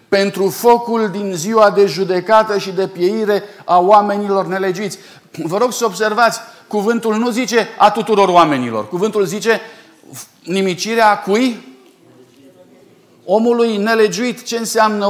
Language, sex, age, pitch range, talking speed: Romanian, male, 40-59, 195-230 Hz, 120 wpm